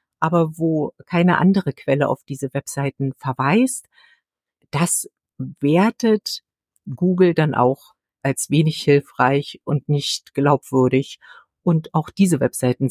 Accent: German